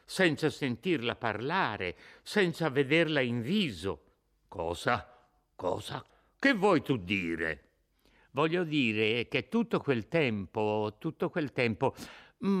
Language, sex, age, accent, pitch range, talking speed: Italian, male, 60-79, native, 110-170 Hz, 105 wpm